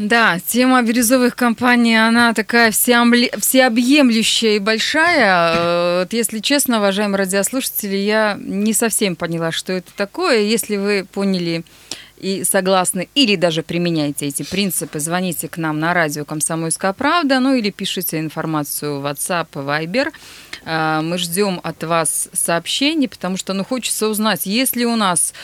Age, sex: 20-39, female